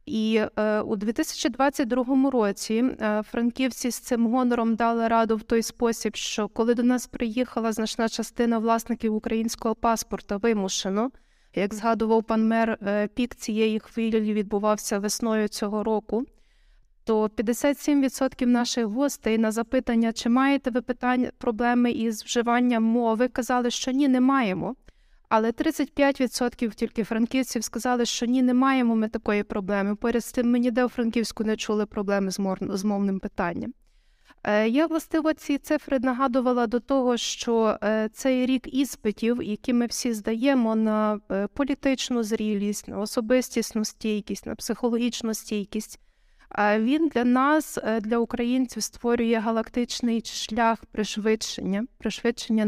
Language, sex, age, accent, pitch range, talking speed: Ukrainian, female, 20-39, native, 215-250 Hz, 135 wpm